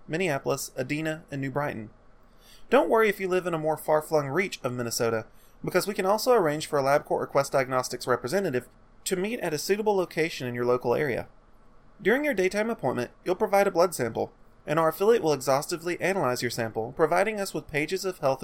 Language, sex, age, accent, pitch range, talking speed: English, male, 30-49, American, 125-185 Hz, 200 wpm